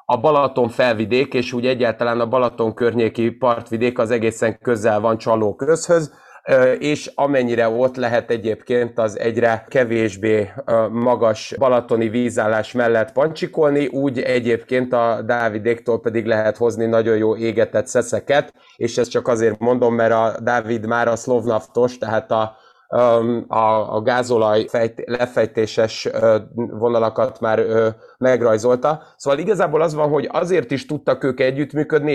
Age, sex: 30-49, male